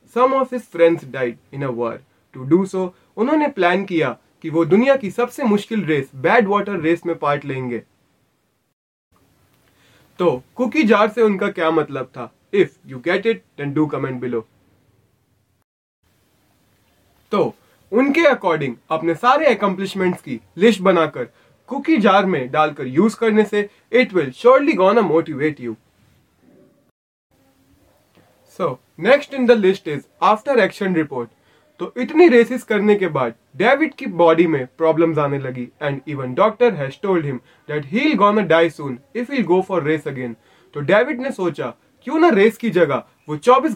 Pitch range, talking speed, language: 135-220 Hz, 115 wpm, Hindi